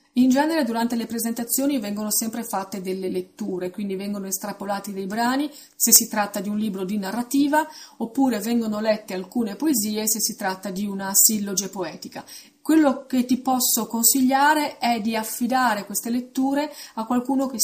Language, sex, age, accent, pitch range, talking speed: Italian, female, 30-49, native, 205-245 Hz, 165 wpm